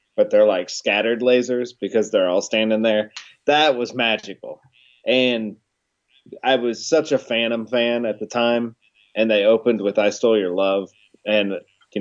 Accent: American